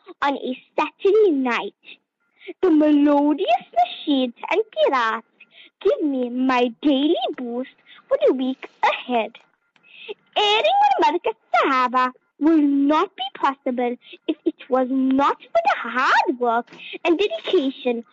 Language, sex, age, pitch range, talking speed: English, female, 20-39, 255-360 Hz, 120 wpm